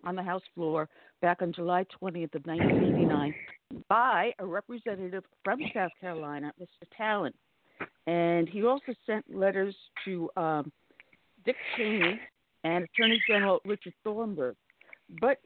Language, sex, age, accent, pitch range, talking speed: English, female, 60-79, American, 180-230 Hz, 130 wpm